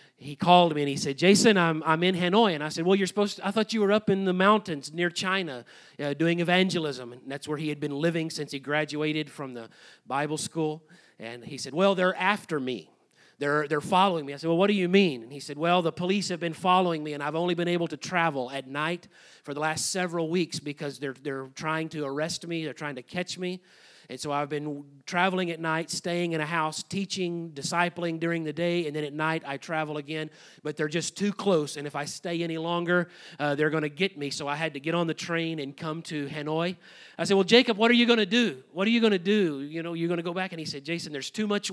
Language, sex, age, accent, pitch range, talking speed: English, male, 40-59, American, 145-180 Hz, 260 wpm